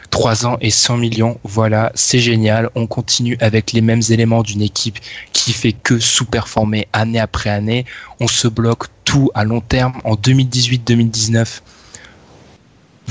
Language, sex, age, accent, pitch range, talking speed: French, male, 20-39, French, 110-125 Hz, 145 wpm